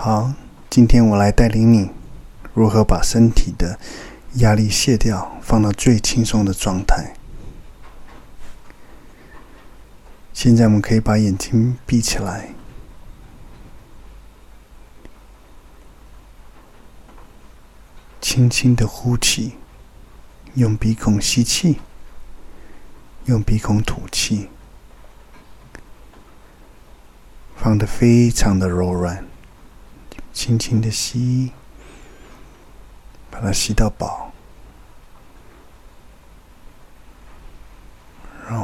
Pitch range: 95-115 Hz